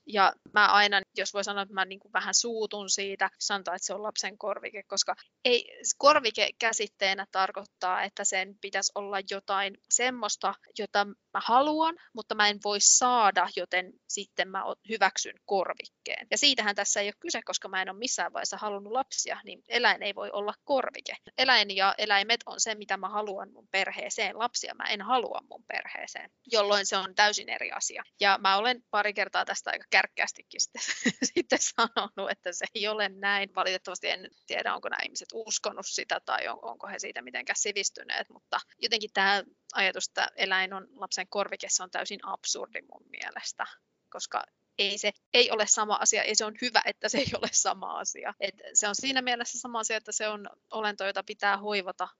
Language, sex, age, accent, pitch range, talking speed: Finnish, female, 20-39, native, 195-225 Hz, 185 wpm